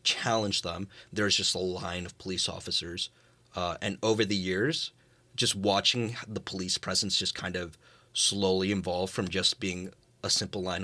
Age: 30-49